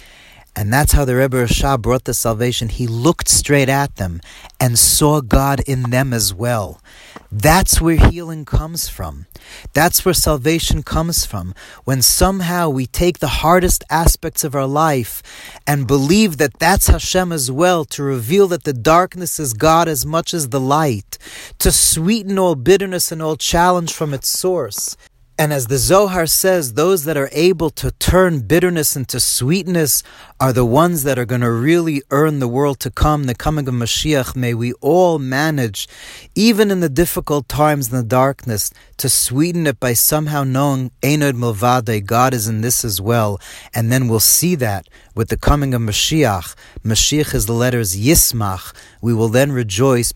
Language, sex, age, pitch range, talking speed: English, male, 40-59, 115-160 Hz, 175 wpm